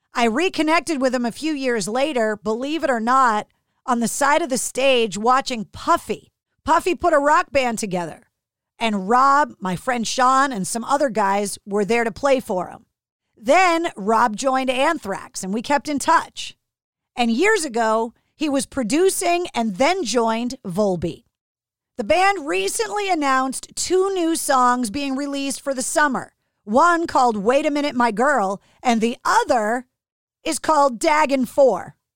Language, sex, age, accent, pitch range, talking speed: English, female, 40-59, American, 225-290 Hz, 160 wpm